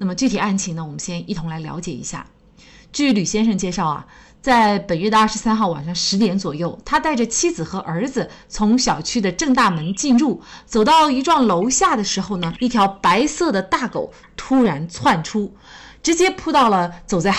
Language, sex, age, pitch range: Chinese, female, 30-49, 180-245 Hz